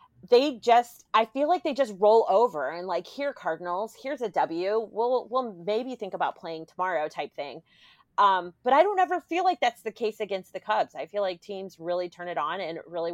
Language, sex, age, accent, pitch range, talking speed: English, female, 30-49, American, 175-230 Hz, 220 wpm